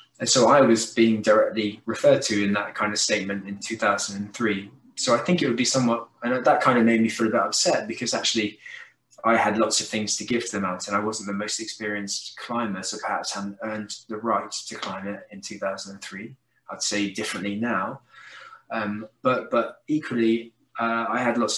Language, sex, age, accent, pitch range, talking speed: English, male, 20-39, British, 105-115 Hz, 205 wpm